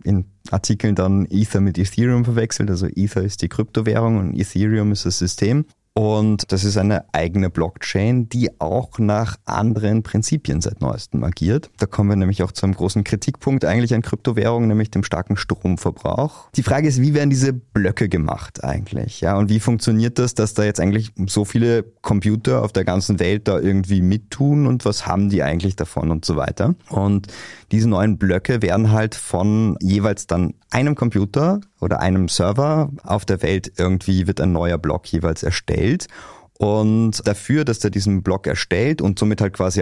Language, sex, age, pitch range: German, male, 30-49, 95-110 Hz